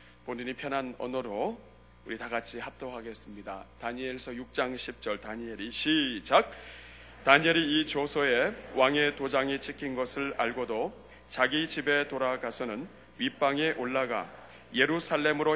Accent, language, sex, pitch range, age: native, Korean, male, 115-155 Hz, 40-59